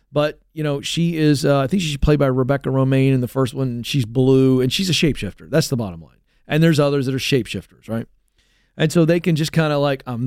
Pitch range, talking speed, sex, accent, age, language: 130-180 Hz, 255 wpm, male, American, 40-59, English